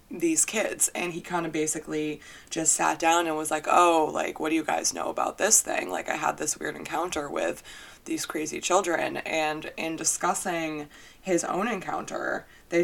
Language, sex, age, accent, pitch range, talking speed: English, female, 20-39, American, 155-180 Hz, 185 wpm